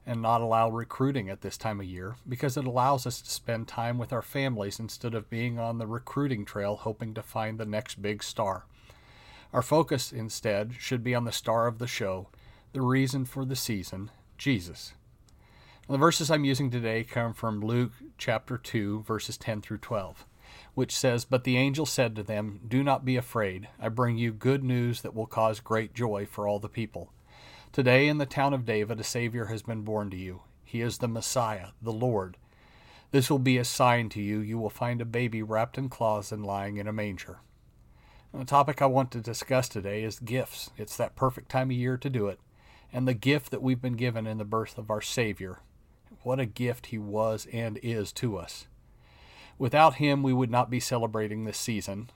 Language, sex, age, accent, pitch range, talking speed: English, male, 40-59, American, 110-130 Hz, 205 wpm